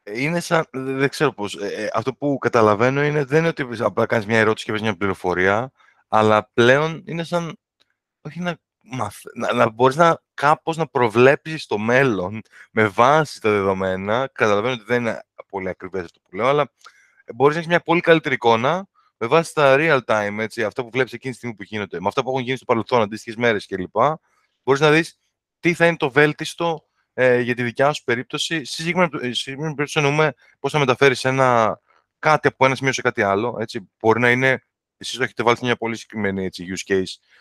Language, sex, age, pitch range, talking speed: Greek, male, 20-39, 105-145 Hz, 195 wpm